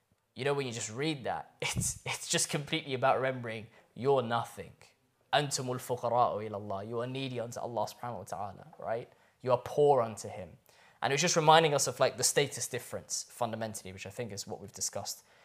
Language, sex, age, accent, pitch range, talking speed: English, male, 10-29, British, 115-150 Hz, 185 wpm